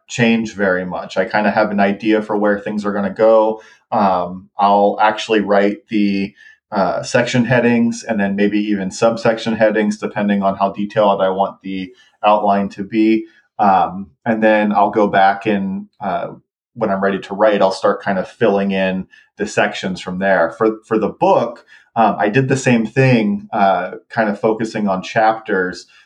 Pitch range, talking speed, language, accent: 100-110 Hz, 180 wpm, English, American